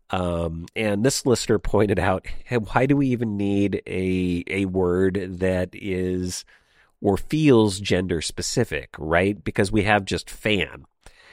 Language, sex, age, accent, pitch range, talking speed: English, male, 40-59, American, 90-115 Hz, 145 wpm